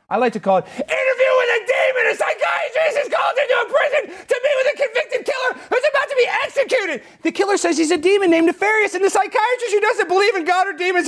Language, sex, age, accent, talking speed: English, male, 30-49, American, 245 wpm